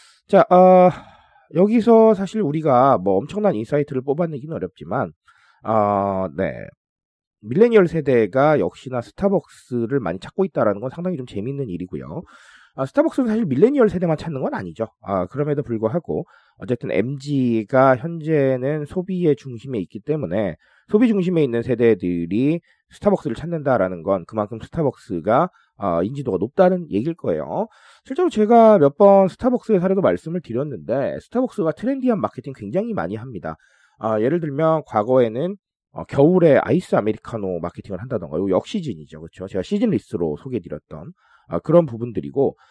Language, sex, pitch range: Korean, male, 110-180 Hz